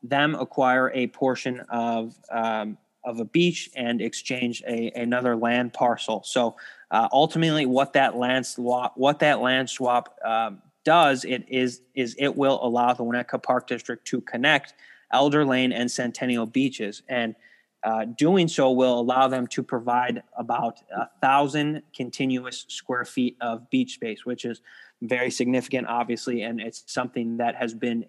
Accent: American